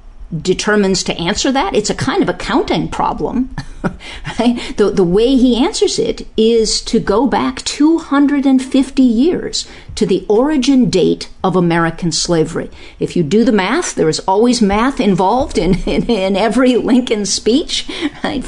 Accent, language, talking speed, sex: American, English, 155 wpm, female